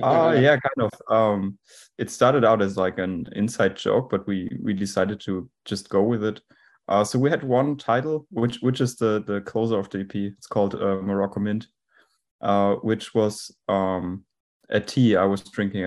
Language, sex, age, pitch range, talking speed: English, male, 20-39, 95-110 Hz, 195 wpm